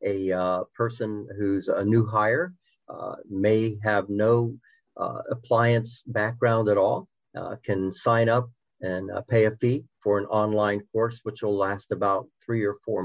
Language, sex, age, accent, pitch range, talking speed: English, male, 50-69, American, 100-120 Hz, 165 wpm